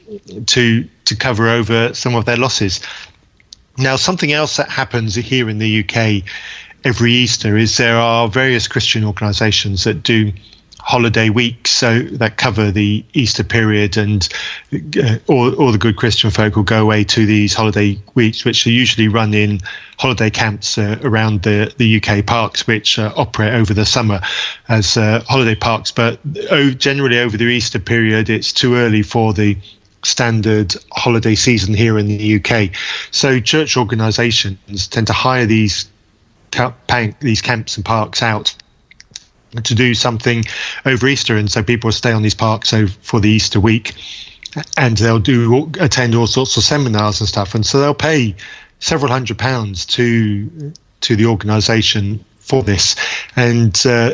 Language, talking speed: English, 160 wpm